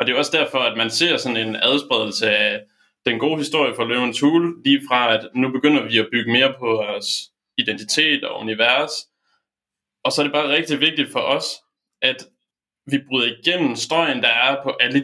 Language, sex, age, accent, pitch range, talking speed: Danish, male, 20-39, native, 115-150 Hz, 200 wpm